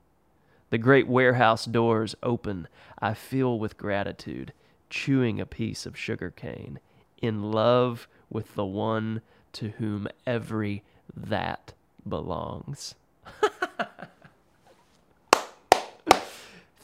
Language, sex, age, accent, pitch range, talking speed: English, male, 30-49, American, 105-130 Hz, 90 wpm